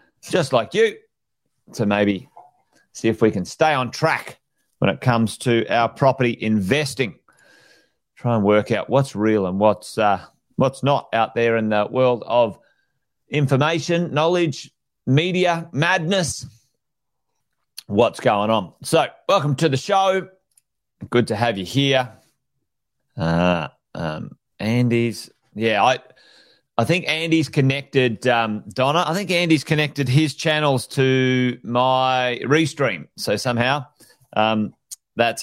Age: 30-49